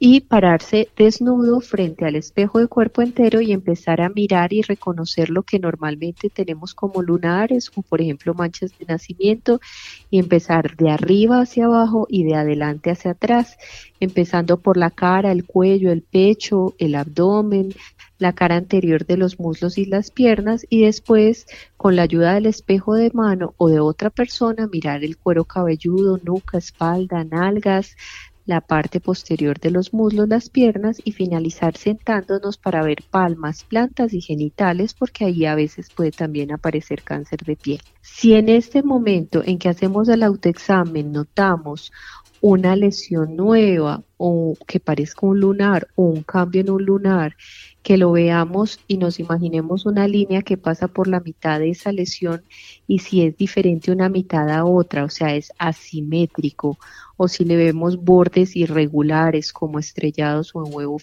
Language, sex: Spanish, female